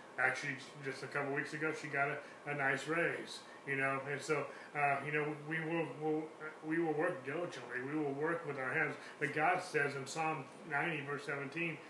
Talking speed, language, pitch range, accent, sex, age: 205 wpm, English, 135-160 Hz, American, male, 30-49